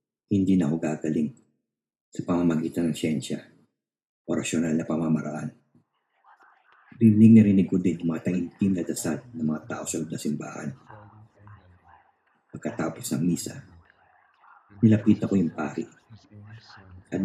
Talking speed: 115 wpm